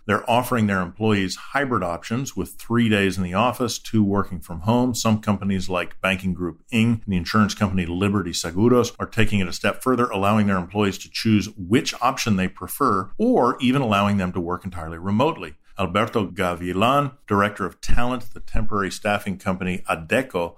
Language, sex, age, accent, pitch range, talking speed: English, male, 50-69, American, 90-110 Hz, 180 wpm